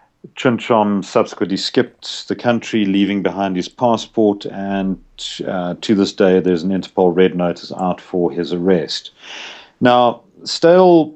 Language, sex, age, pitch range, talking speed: English, male, 50-69, 90-105 Hz, 135 wpm